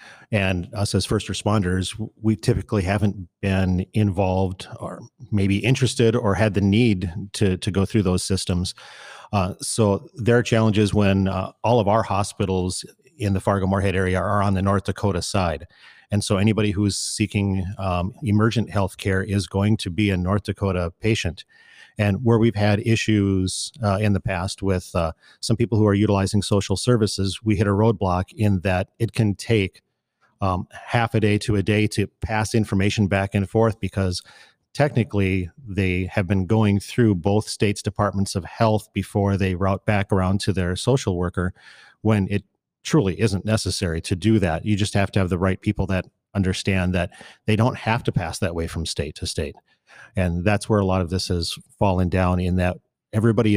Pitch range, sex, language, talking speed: 95-110 Hz, male, English, 185 wpm